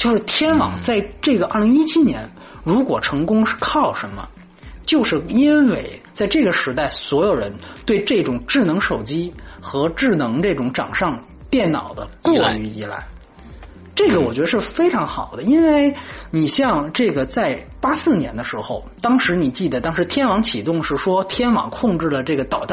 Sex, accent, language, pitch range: male, Chinese, French, 170-275 Hz